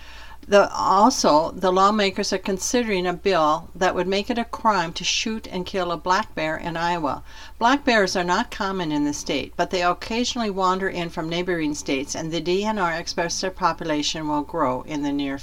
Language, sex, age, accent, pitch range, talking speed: English, female, 60-79, American, 160-205 Hz, 190 wpm